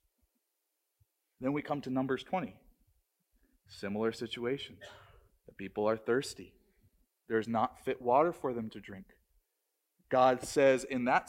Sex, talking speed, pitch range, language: male, 135 wpm, 135-205 Hz, English